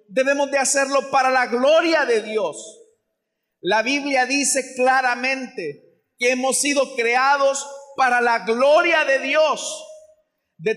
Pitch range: 255-305 Hz